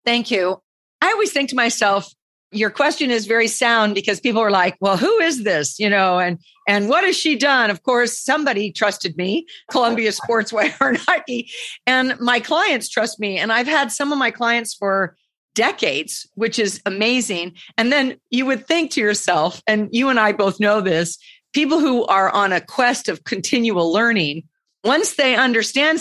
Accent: American